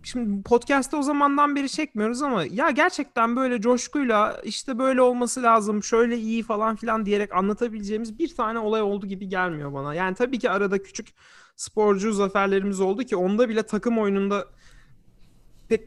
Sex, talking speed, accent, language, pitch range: male, 160 wpm, native, Turkish, 155-220 Hz